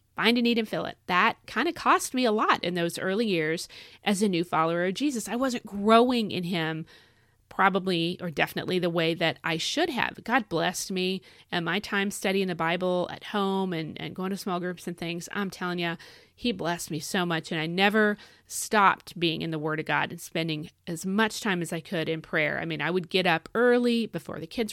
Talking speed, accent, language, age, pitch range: 230 wpm, American, English, 30-49, 165-210 Hz